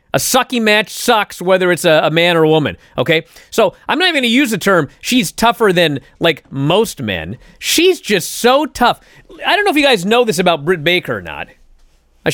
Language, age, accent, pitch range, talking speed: English, 30-49, American, 165-245 Hz, 225 wpm